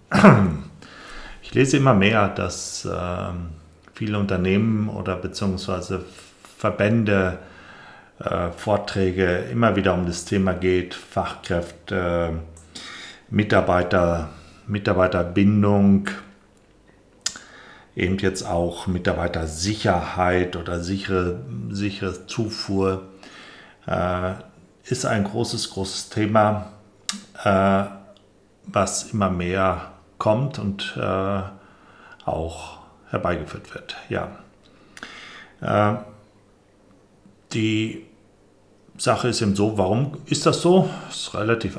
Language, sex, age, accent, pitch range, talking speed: German, male, 40-59, German, 90-105 Hz, 90 wpm